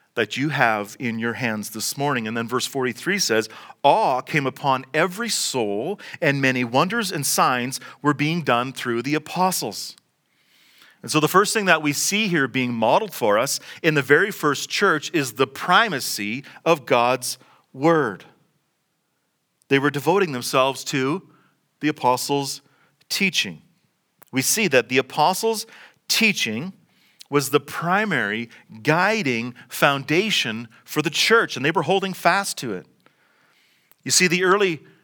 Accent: American